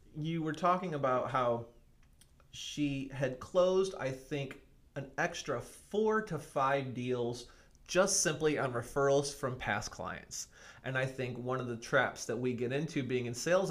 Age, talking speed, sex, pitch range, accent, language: 30-49, 160 wpm, male, 125-155 Hz, American, English